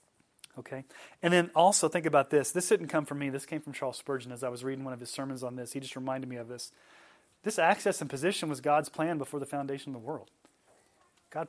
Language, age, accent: English, 30-49, American